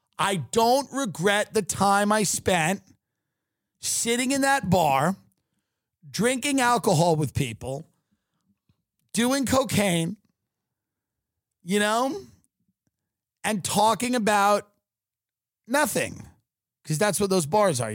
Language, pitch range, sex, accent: English, 145-185 Hz, male, American